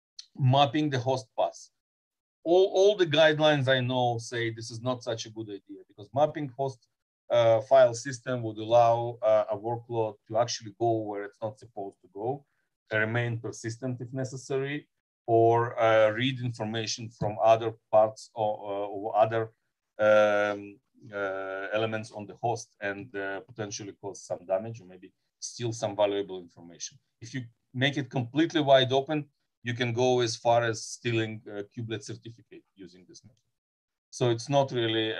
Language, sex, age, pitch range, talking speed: English, male, 40-59, 110-130 Hz, 160 wpm